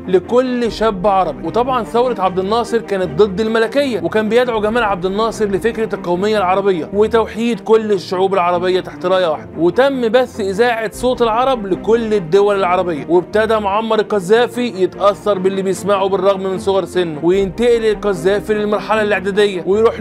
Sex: male